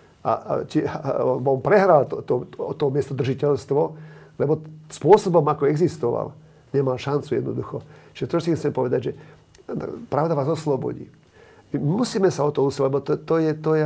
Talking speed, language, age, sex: 160 wpm, Slovak, 50-69, male